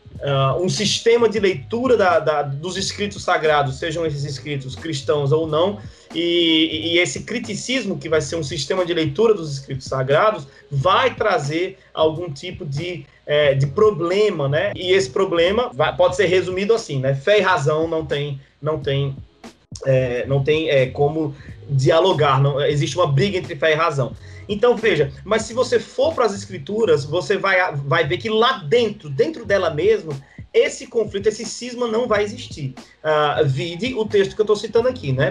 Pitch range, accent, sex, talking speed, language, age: 145-215 Hz, Brazilian, male, 180 wpm, Portuguese, 20-39